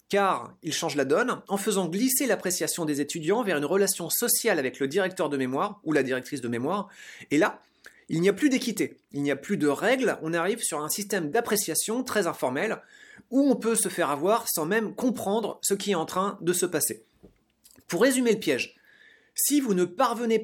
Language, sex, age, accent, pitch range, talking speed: French, male, 30-49, French, 165-230 Hz, 210 wpm